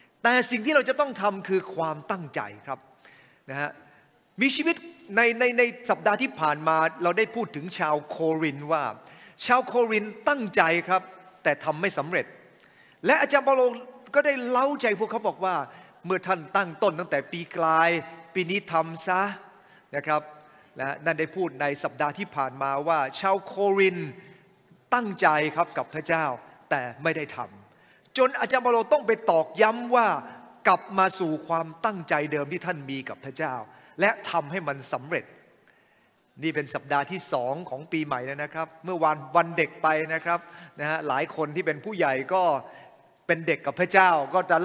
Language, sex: English, male